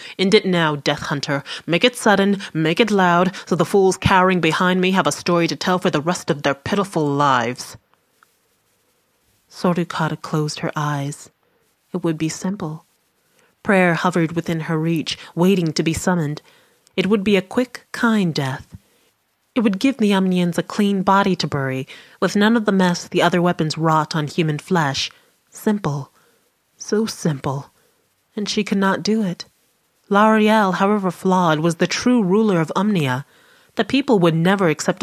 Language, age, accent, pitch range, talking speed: English, 30-49, American, 155-195 Hz, 170 wpm